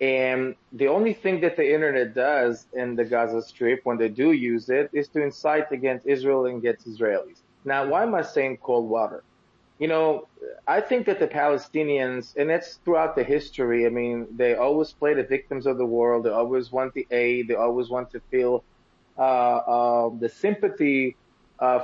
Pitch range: 125-155 Hz